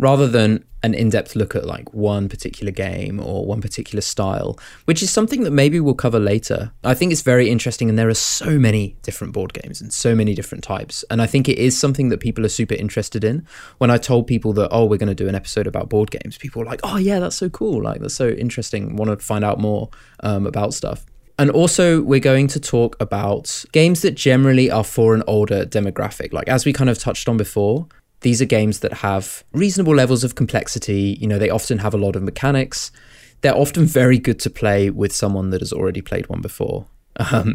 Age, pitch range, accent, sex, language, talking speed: 20-39, 105-135 Hz, British, male, English, 230 wpm